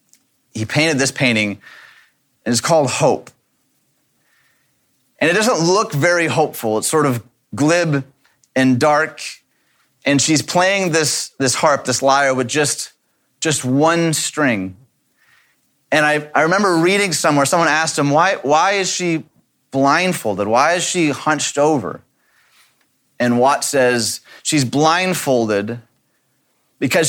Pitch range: 130-160 Hz